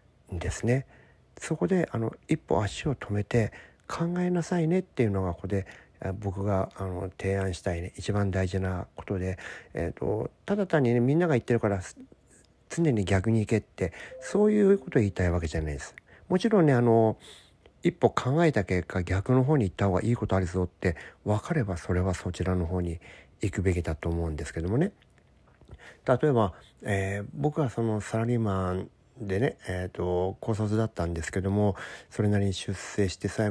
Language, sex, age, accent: Japanese, male, 50-69, native